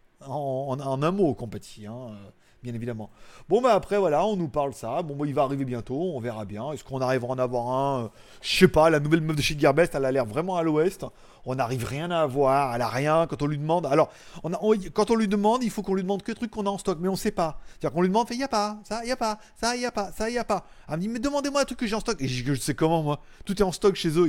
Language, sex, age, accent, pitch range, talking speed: French, male, 30-49, French, 130-195 Hz, 320 wpm